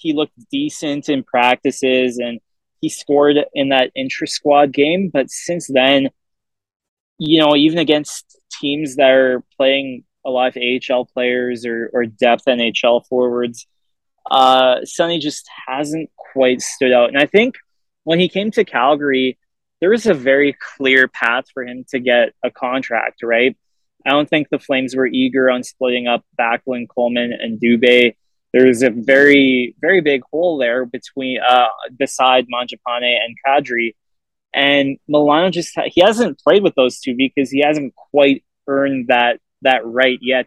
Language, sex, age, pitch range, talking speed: English, male, 20-39, 125-145 Hz, 160 wpm